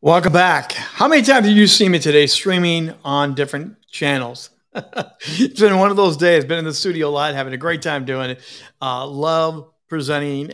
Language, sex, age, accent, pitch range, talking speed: English, male, 50-69, American, 135-180 Hz, 200 wpm